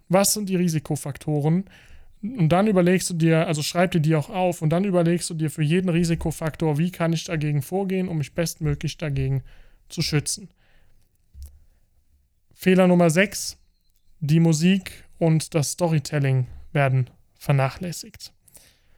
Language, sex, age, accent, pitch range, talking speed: German, male, 20-39, German, 150-170 Hz, 140 wpm